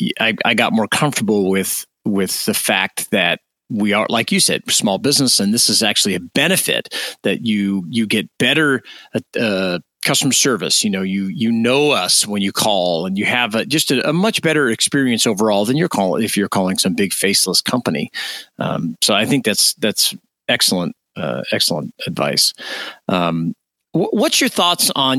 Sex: male